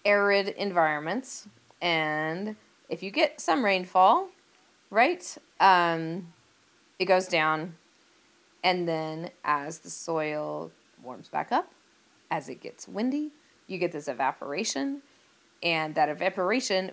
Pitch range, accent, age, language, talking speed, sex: 145-190 Hz, American, 20-39, English, 115 wpm, female